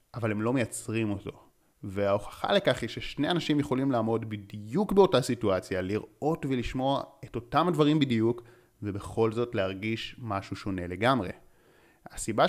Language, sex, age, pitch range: Hebrew, male, 30-49, 105-125 Hz